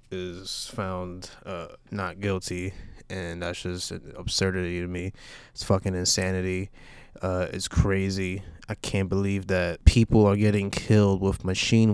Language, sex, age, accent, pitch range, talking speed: English, male, 20-39, American, 90-100 Hz, 135 wpm